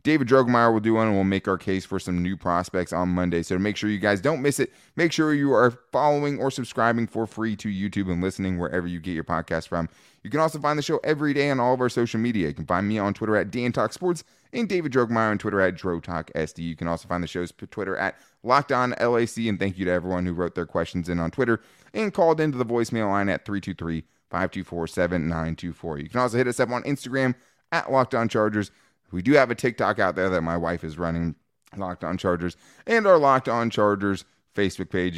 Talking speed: 240 wpm